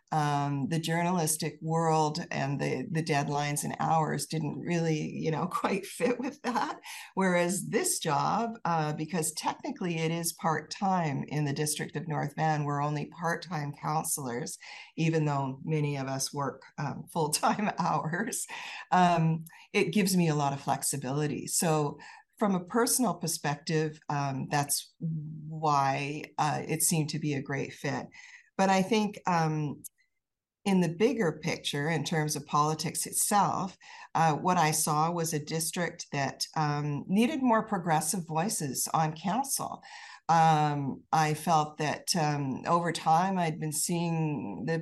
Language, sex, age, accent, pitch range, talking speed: English, female, 50-69, American, 150-175 Hz, 145 wpm